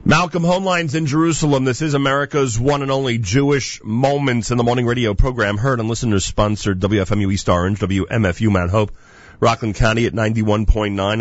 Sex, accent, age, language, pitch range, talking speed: male, American, 40-59, English, 100-130 Hz, 165 wpm